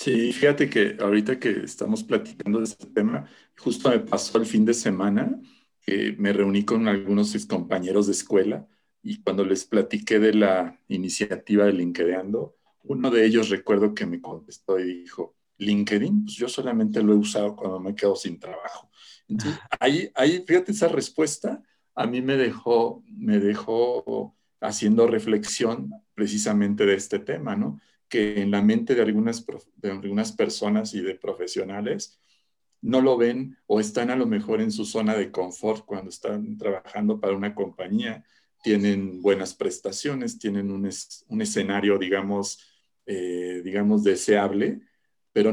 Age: 50-69